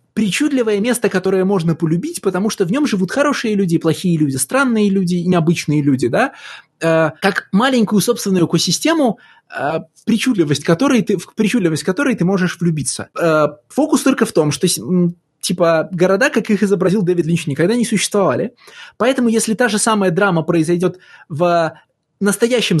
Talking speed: 145 wpm